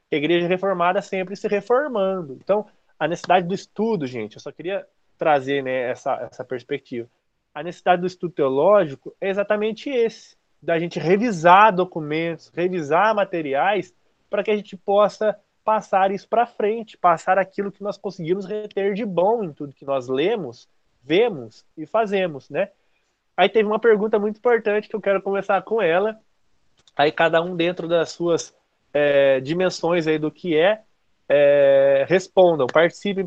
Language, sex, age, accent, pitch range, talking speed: Portuguese, male, 20-39, Brazilian, 165-220 Hz, 155 wpm